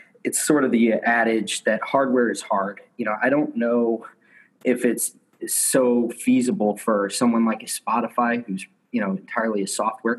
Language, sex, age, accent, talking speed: English, male, 20-39, American, 170 wpm